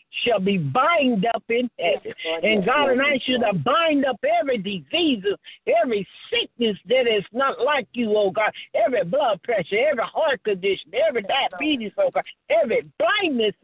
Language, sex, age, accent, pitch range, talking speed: English, male, 60-79, American, 240-345 Hz, 165 wpm